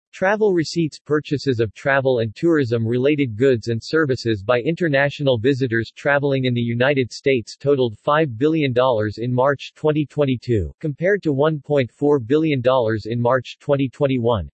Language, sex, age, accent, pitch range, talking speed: English, male, 40-59, American, 120-155 Hz, 130 wpm